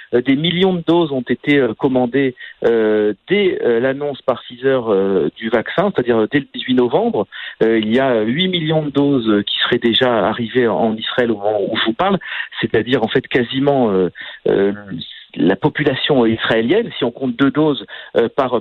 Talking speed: 160 wpm